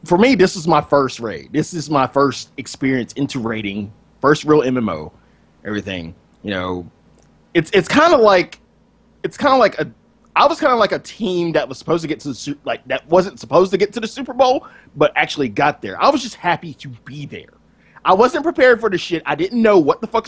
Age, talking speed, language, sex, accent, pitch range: 30-49, 230 wpm, English, male, American, 110-170 Hz